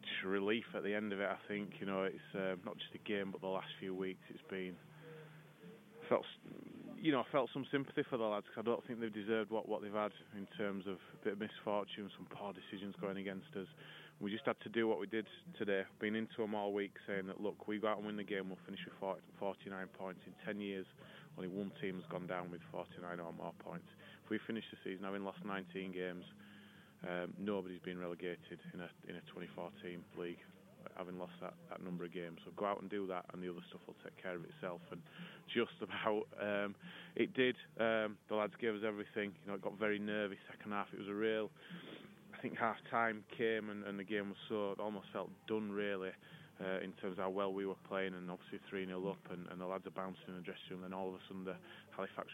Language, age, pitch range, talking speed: English, 20-39, 95-105 Hz, 240 wpm